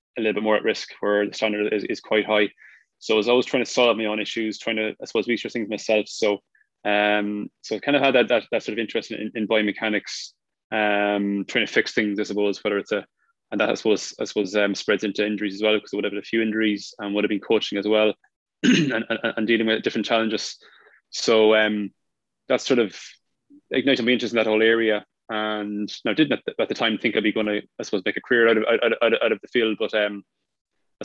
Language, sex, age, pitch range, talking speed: English, male, 20-39, 105-110 Hz, 255 wpm